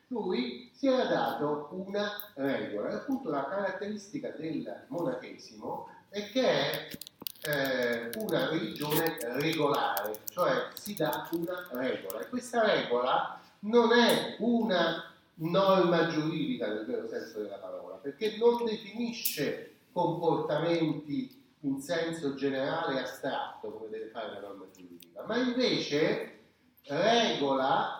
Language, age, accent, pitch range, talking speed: Italian, 30-49, native, 150-225 Hz, 120 wpm